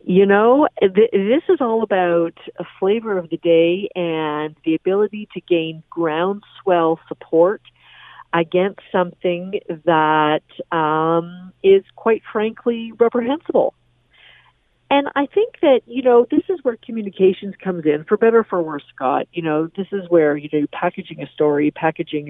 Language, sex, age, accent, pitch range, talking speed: English, female, 50-69, American, 150-195 Hz, 150 wpm